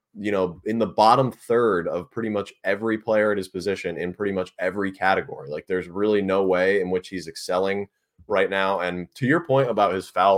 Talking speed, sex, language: 215 wpm, male, English